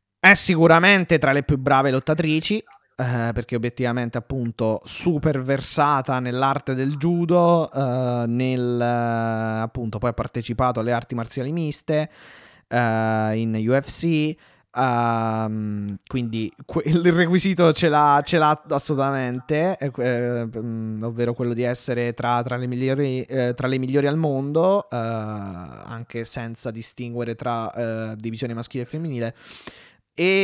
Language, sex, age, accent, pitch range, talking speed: Italian, male, 20-39, native, 115-150 Hz, 115 wpm